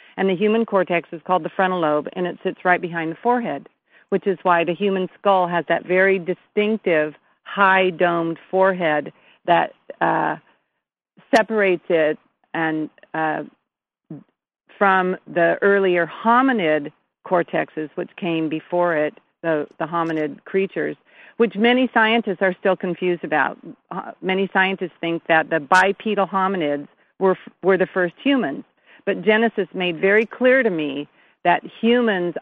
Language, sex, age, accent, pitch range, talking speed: English, female, 50-69, American, 170-195 Hz, 145 wpm